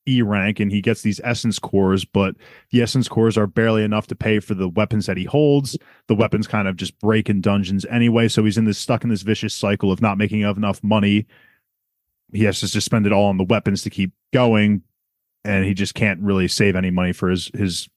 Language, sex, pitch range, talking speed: English, male, 95-115 Hz, 230 wpm